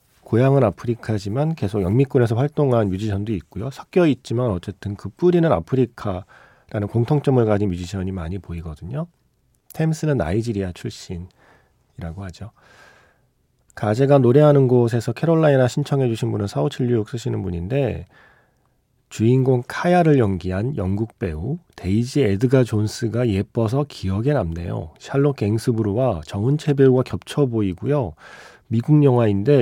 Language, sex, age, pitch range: Korean, male, 40-59, 95-135 Hz